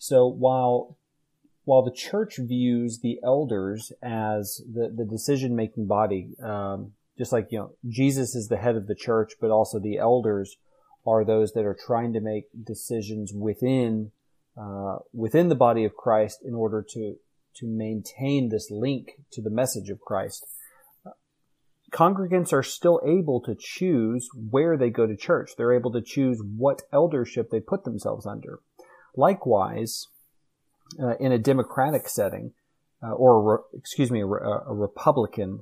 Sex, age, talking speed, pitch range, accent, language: male, 30-49, 155 wpm, 110-135 Hz, American, English